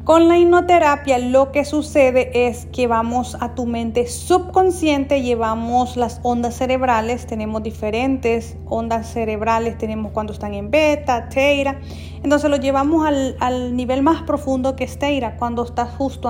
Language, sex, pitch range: Spanish, female, 215-275 Hz